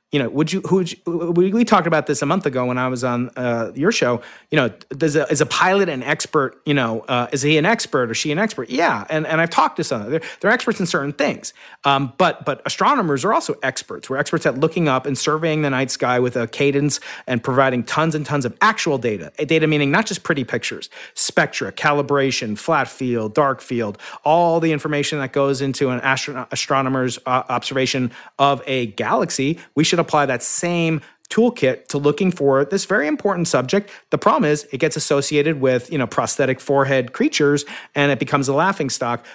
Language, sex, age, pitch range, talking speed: English, male, 40-59, 130-160 Hz, 215 wpm